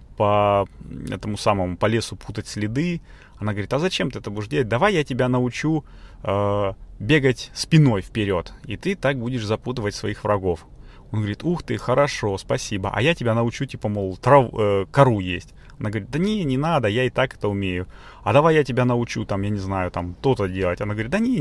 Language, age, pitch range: Russian, 30-49, 100-130 Hz